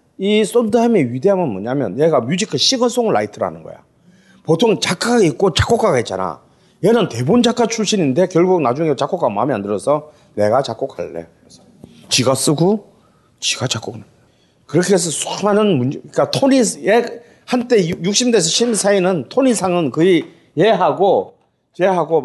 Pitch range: 125-190 Hz